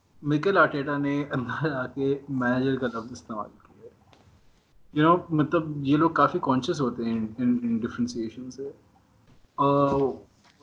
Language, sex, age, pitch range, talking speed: Urdu, male, 30-49, 125-150 Hz, 125 wpm